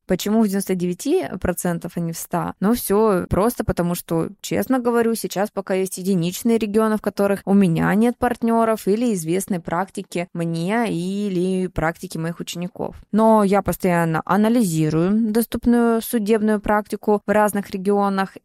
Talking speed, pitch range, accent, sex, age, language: 145 wpm, 170-210 Hz, native, female, 20-39, Russian